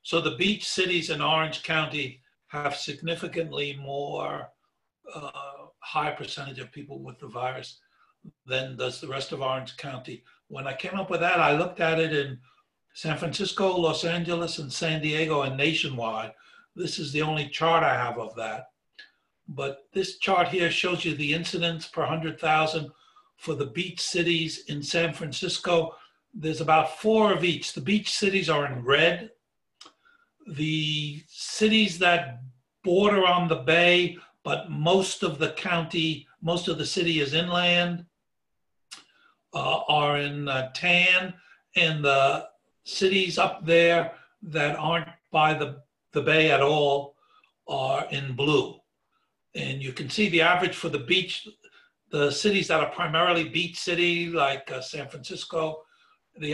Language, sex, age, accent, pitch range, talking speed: English, male, 60-79, American, 150-180 Hz, 150 wpm